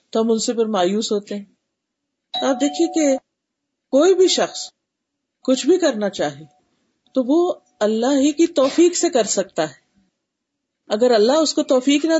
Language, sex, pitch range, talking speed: Urdu, female, 220-290 Hz, 160 wpm